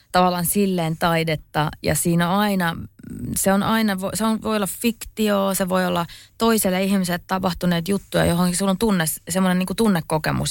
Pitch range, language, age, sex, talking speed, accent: 160-205 Hz, Finnish, 20-39, female, 155 wpm, native